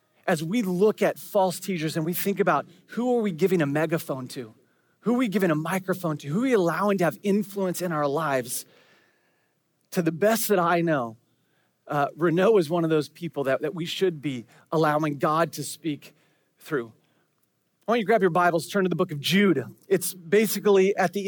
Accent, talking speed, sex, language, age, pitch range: American, 210 wpm, male, English, 30-49, 170-225 Hz